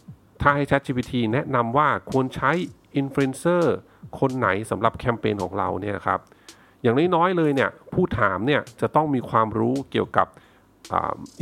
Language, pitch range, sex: Thai, 100-130 Hz, male